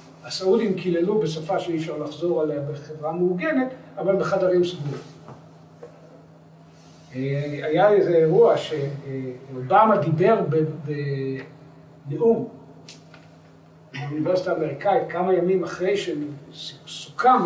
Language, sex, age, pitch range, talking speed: Hebrew, male, 60-79, 155-195 Hz, 85 wpm